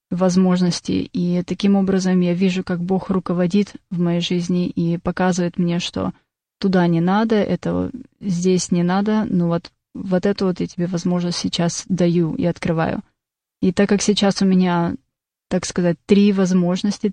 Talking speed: 160 wpm